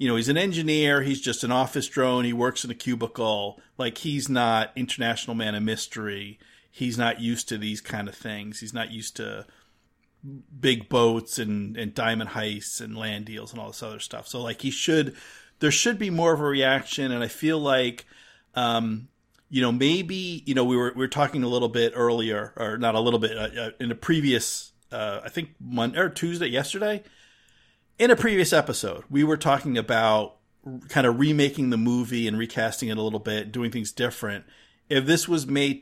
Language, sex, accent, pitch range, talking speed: English, male, American, 115-140 Hz, 200 wpm